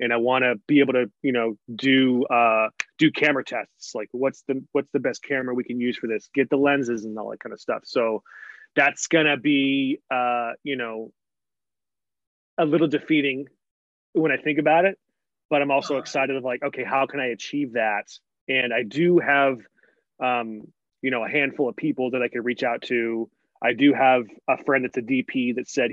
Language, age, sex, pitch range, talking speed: English, 30-49, male, 120-145 Hz, 210 wpm